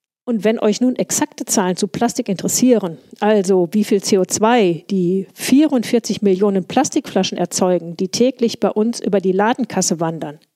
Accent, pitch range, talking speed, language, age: German, 190-245 Hz, 150 wpm, German, 50-69